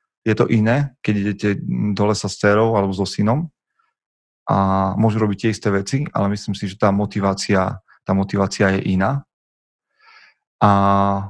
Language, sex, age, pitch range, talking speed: Slovak, male, 30-49, 100-115 Hz, 155 wpm